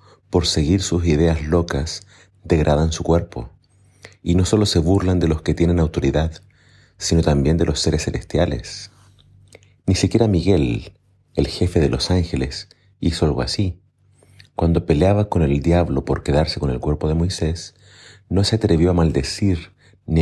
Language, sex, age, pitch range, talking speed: Spanish, male, 40-59, 80-100 Hz, 155 wpm